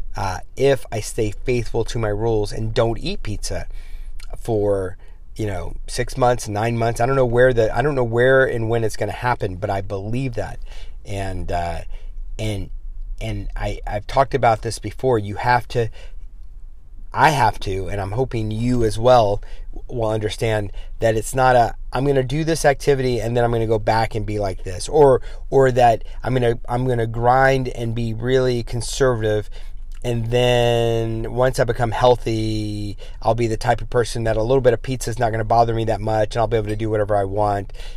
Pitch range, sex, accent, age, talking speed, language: 95-120 Hz, male, American, 30-49, 200 wpm, English